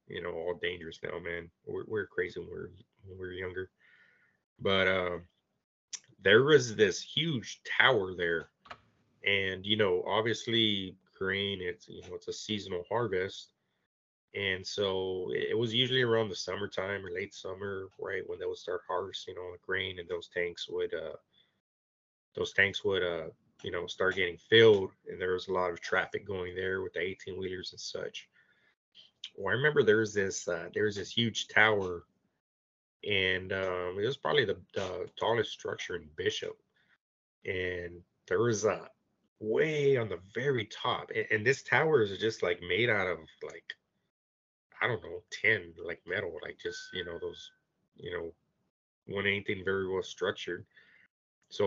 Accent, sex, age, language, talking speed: American, male, 20-39, English, 165 wpm